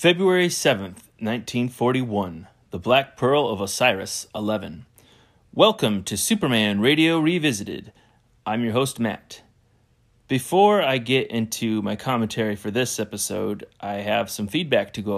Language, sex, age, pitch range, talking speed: English, male, 30-49, 105-130 Hz, 130 wpm